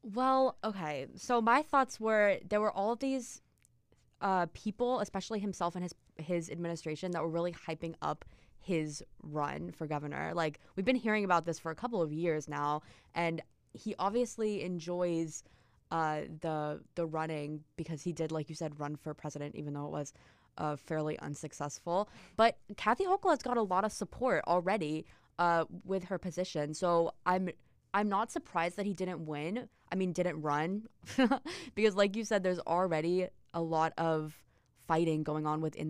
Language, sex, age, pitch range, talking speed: English, female, 20-39, 155-195 Hz, 175 wpm